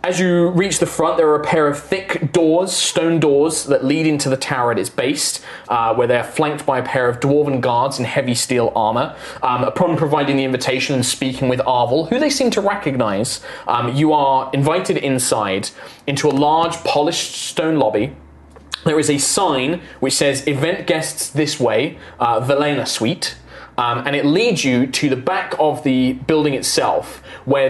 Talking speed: 190 wpm